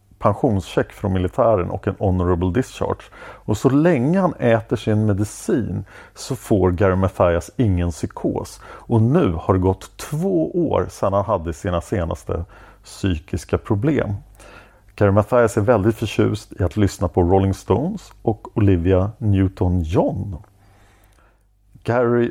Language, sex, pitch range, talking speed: English, male, 90-115 Hz, 130 wpm